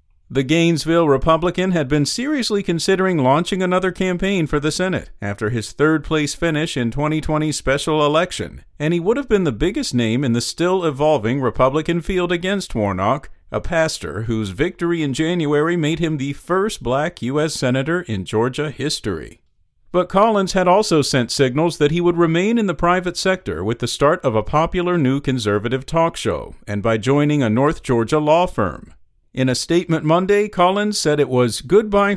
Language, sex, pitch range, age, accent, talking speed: English, male, 130-180 Hz, 50-69, American, 175 wpm